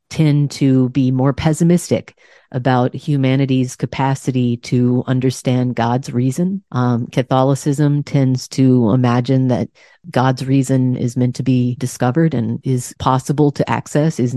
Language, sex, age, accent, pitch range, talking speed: English, female, 40-59, American, 125-150 Hz, 130 wpm